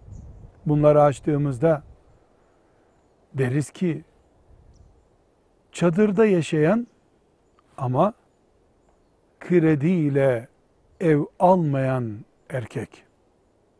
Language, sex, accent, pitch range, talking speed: Turkish, male, native, 115-165 Hz, 50 wpm